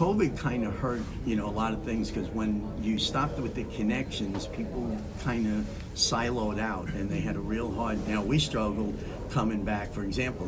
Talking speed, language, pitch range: 200 wpm, English, 105-115 Hz